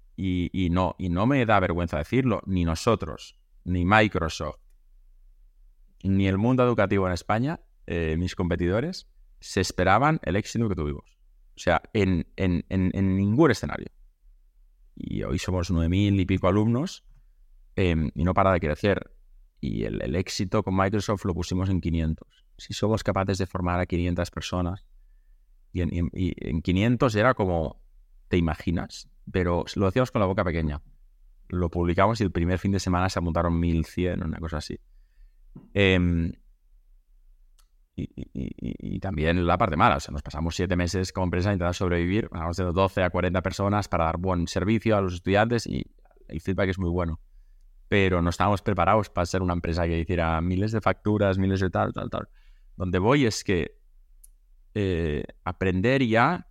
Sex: male